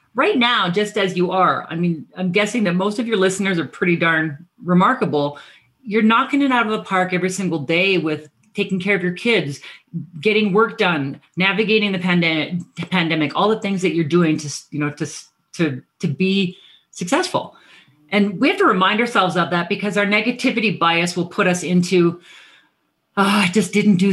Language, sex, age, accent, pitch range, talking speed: English, female, 40-59, American, 165-210 Hz, 190 wpm